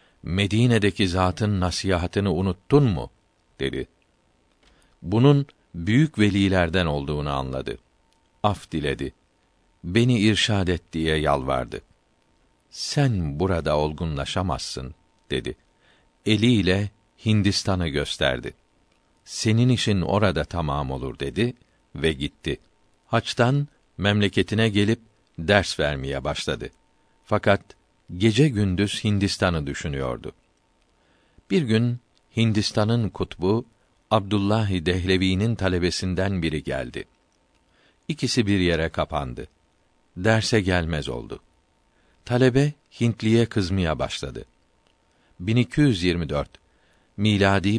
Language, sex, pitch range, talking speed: Turkish, male, 85-110 Hz, 85 wpm